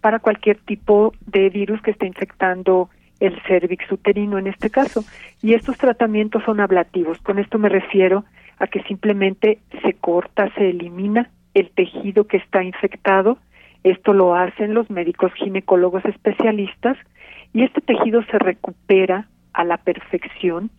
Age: 50-69